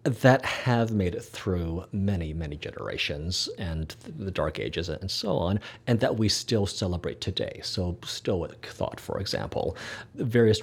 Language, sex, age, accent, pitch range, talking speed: English, male, 40-59, American, 95-120 Hz, 150 wpm